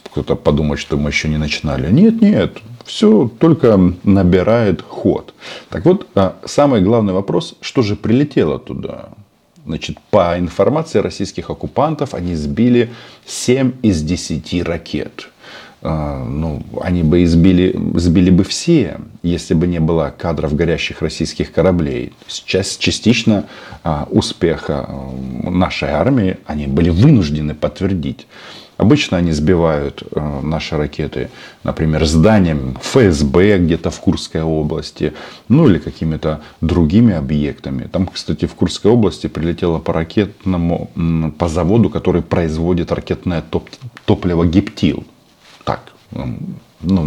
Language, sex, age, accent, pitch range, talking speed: Russian, male, 40-59, native, 75-105 Hz, 120 wpm